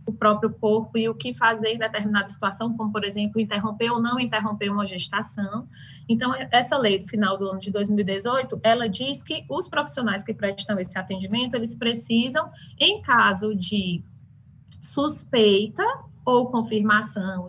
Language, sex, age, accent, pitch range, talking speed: Portuguese, female, 20-39, Brazilian, 210-275 Hz, 155 wpm